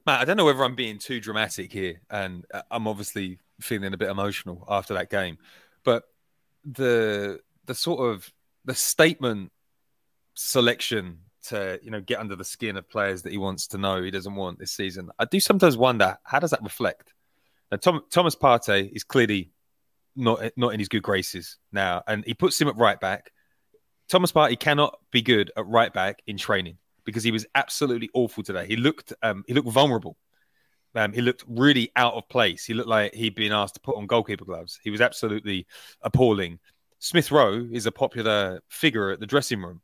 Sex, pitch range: male, 100-130 Hz